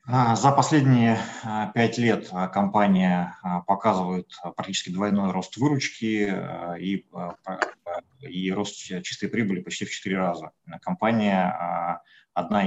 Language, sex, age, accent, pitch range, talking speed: Russian, male, 30-49, native, 90-115 Hz, 100 wpm